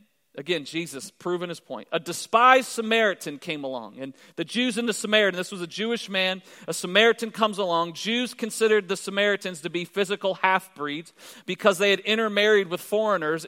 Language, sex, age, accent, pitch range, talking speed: English, male, 40-59, American, 170-215 Hz, 175 wpm